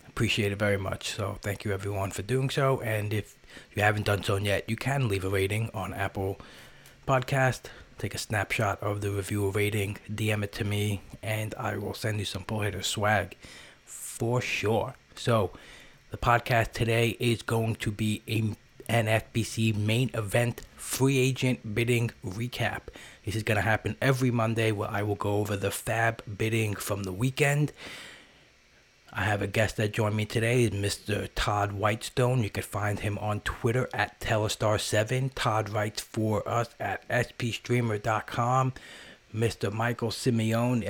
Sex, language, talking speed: male, English, 165 wpm